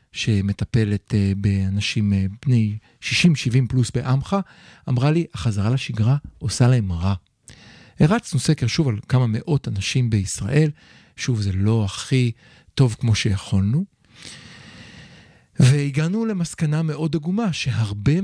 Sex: male